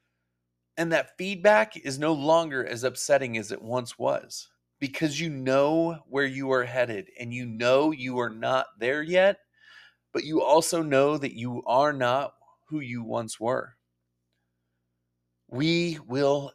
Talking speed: 150 wpm